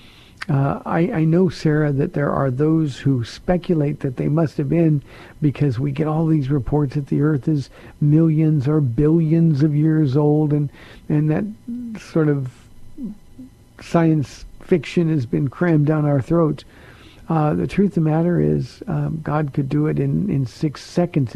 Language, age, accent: English, 50-69, American